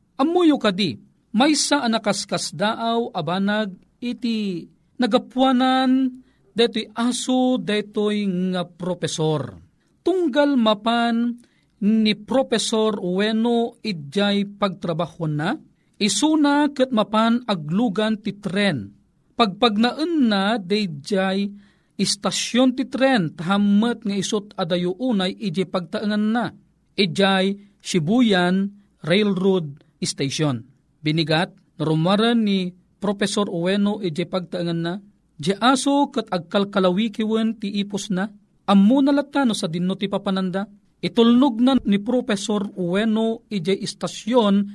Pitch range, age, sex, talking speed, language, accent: 185-235 Hz, 40-59, male, 95 wpm, Filipino, native